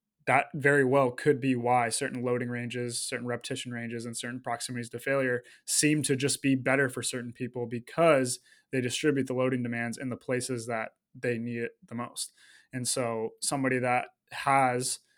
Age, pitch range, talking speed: 20-39, 120-135 Hz, 180 wpm